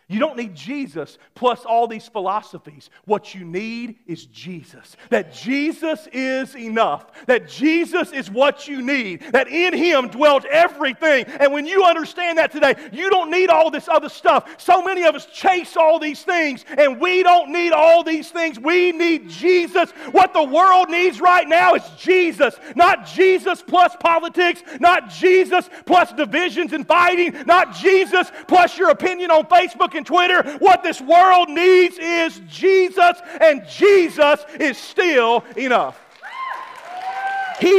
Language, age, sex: English, 40-59, male